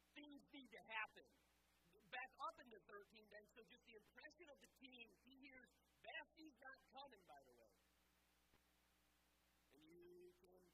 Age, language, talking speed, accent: 40-59, English, 150 wpm, American